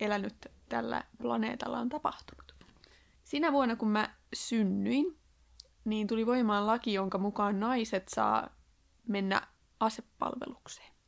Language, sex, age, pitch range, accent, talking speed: Finnish, female, 20-39, 205-260 Hz, native, 110 wpm